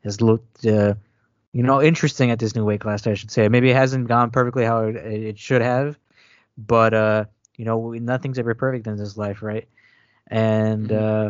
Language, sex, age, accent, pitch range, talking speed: English, male, 20-39, American, 110-125 Hz, 195 wpm